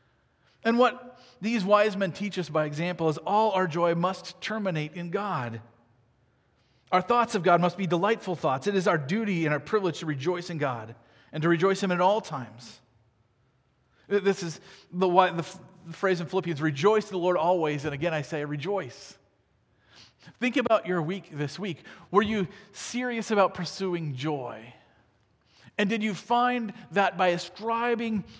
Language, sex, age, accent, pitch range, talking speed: English, male, 40-59, American, 155-215 Hz, 165 wpm